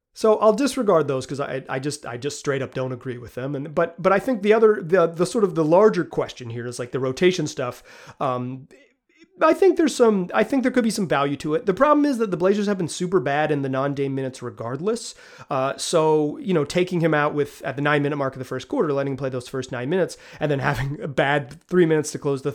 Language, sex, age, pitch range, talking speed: English, male, 30-49, 135-190 Hz, 260 wpm